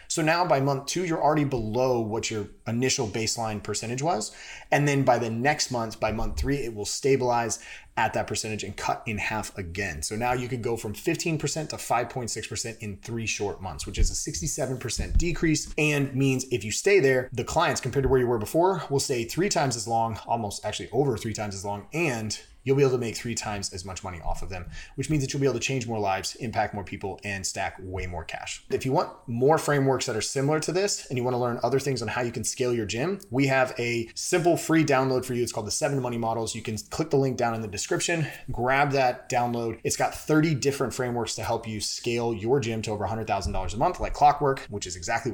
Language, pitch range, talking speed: English, 110-140 Hz, 240 wpm